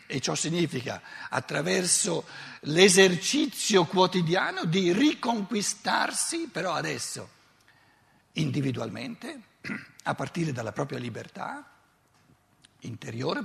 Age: 60-79